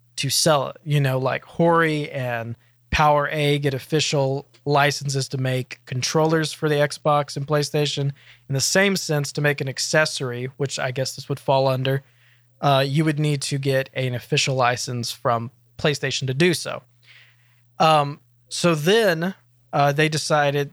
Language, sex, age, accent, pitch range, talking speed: English, male, 20-39, American, 125-155 Hz, 160 wpm